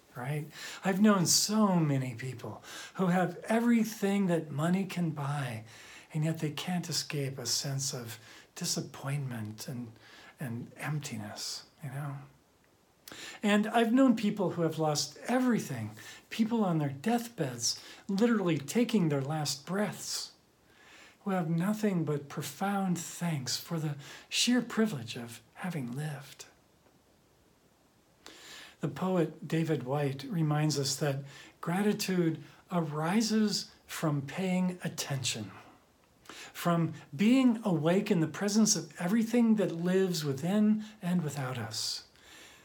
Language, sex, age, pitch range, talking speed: English, male, 50-69, 145-205 Hz, 115 wpm